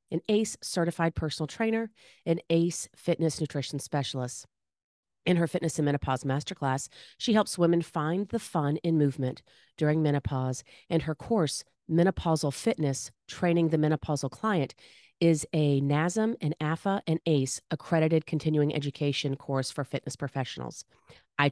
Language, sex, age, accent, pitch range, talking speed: English, female, 30-49, American, 135-165 Hz, 140 wpm